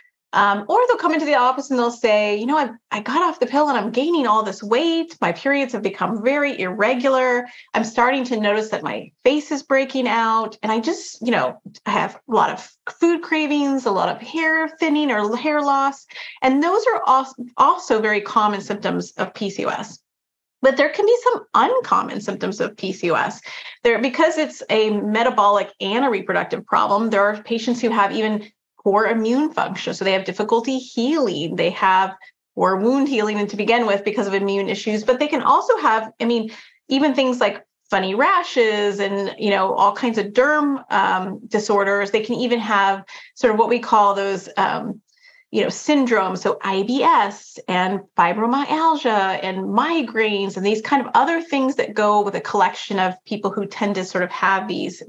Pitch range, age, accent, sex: 205-280 Hz, 30-49, American, female